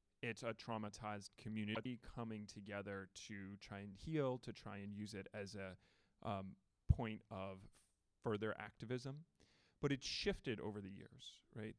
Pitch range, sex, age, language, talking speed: 105-130 Hz, male, 30-49, English, 150 wpm